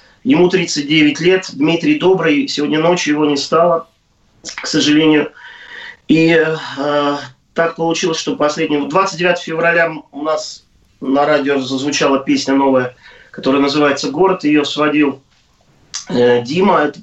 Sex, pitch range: male, 140-165 Hz